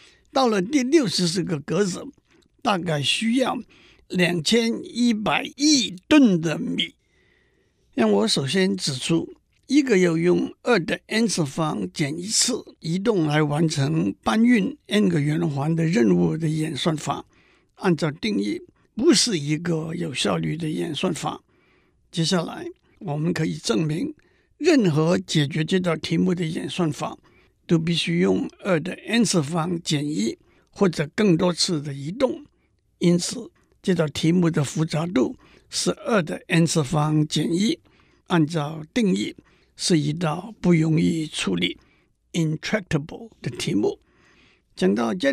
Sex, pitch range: male, 160-220 Hz